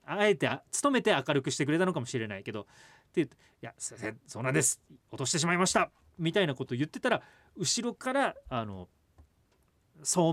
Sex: male